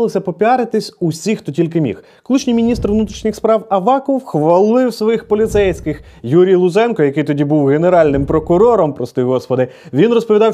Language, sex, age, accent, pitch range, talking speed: Ukrainian, male, 20-39, native, 160-225 Hz, 135 wpm